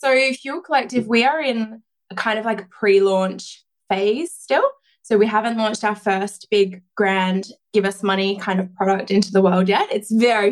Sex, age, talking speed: female, 20-39, 195 wpm